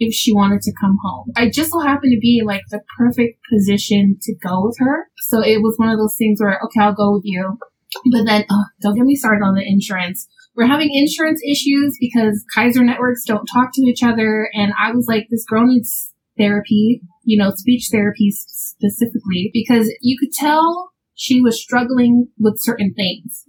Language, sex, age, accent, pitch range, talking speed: English, female, 20-39, American, 205-250 Hz, 195 wpm